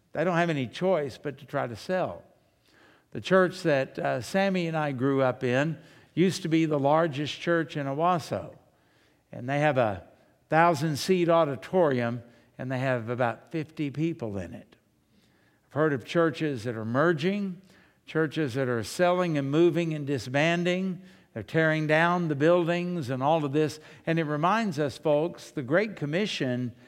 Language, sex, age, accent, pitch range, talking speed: English, male, 60-79, American, 140-180 Hz, 165 wpm